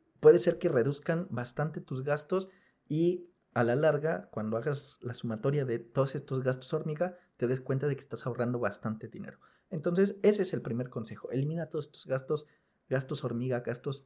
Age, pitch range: 40-59, 125-160 Hz